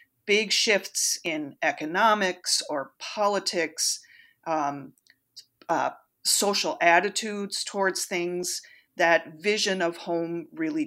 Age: 40-59